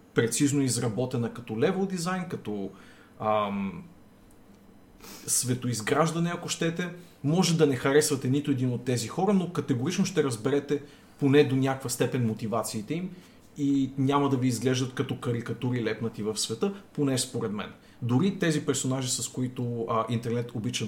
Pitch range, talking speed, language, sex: 115-150 Hz, 145 wpm, Bulgarian, male